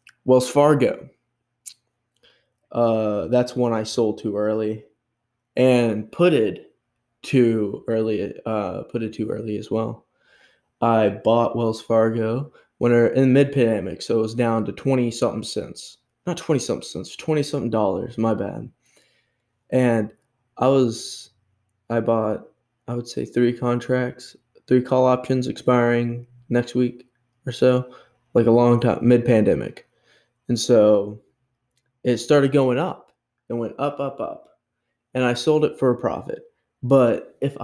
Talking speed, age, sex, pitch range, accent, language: 145 wpm, 20-39, male, 115-125 Hz, American, English